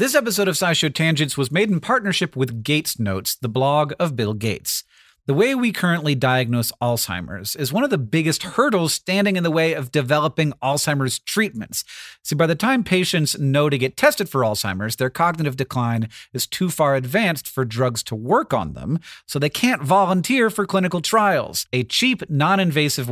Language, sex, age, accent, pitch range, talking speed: English, male, 40-59, American, 130-180 Hz, 185 wpm